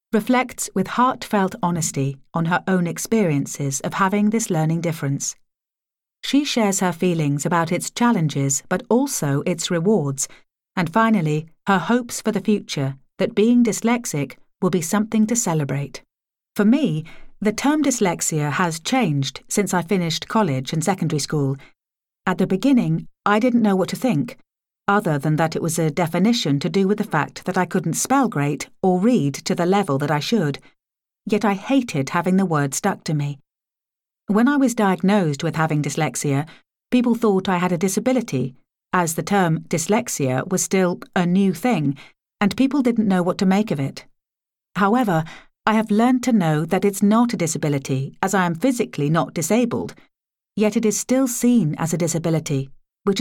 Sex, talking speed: female, 175 wpm